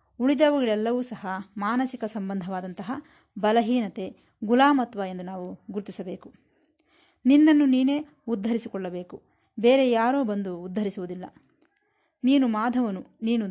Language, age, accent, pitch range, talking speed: Kannada, 20-39, native, 195-260 Hz, 85 wpm